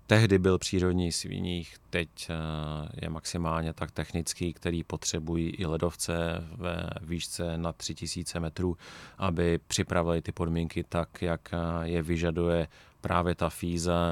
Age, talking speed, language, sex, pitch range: 30-49, 125 wpm, Czech, male, 85-95 Hz